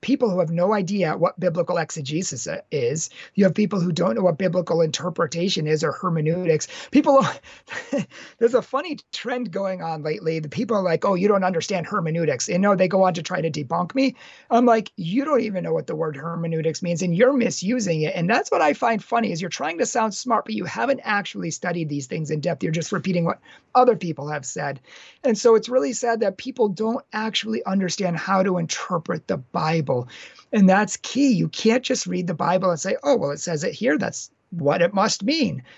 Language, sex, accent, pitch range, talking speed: English, male, American, 165-220 Hz, 215 wpm